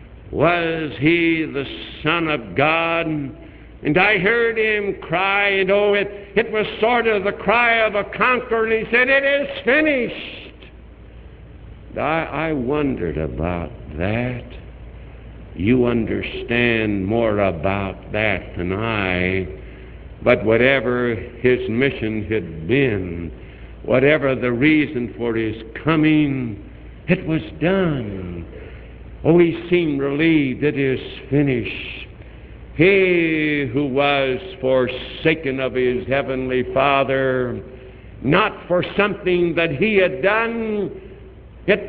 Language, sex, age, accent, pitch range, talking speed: English, male, 70-89, American, 115-190 Hz, 115 wpm